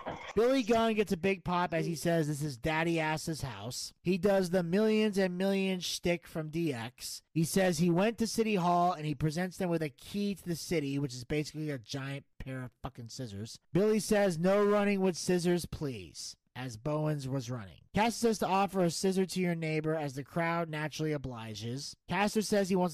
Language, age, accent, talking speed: English, 30-49, American, 205 wpm